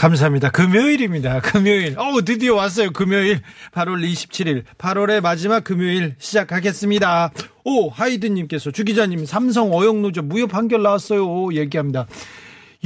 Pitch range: 155-225 Hz